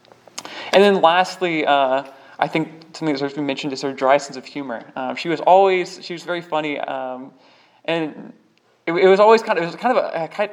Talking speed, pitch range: 215 wpm, 140-180 Hz